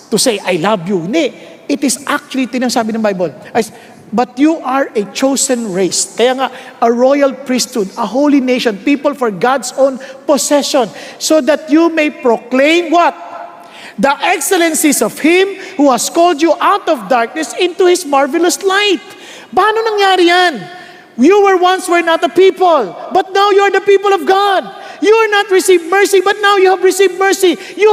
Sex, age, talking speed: male, 50-69, 175 wpm